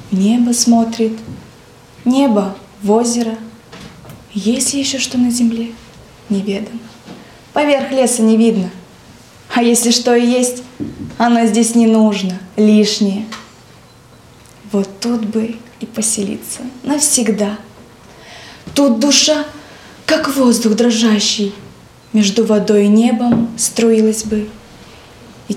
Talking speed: 105 wpm